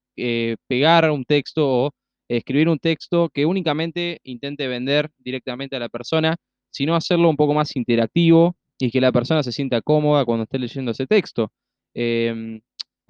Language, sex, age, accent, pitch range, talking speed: Spanish, male, 20-39, Argentinian, 130-170 Hz, 160 wpm